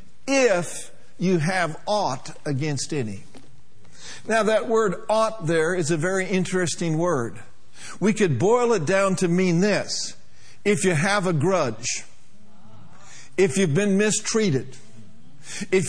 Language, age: English, 60-79